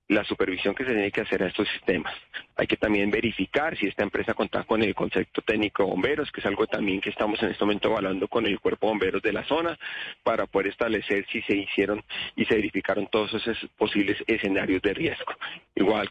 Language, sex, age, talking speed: Spanish, male, 40-59, 210 wpm